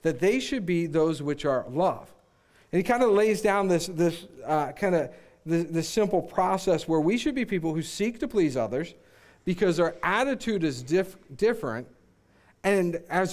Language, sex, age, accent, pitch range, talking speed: English, male, 50-69, American, 155-200 Hz, 175 wpm